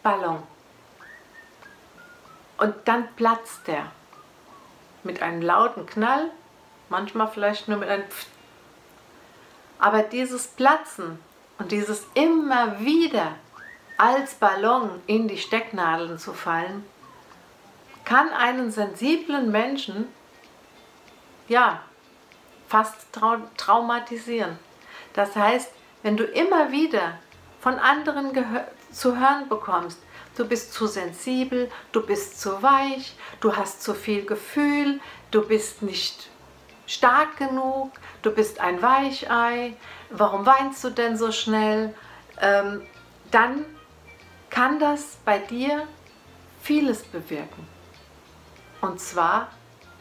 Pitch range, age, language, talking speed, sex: 205-270 Hz, 60-79, German, 105 wpm, female